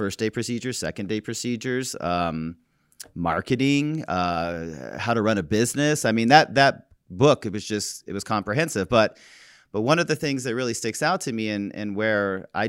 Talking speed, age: 195 wpm, 30-49